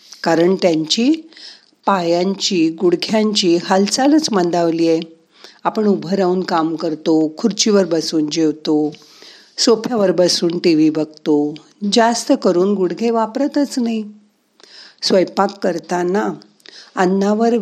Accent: native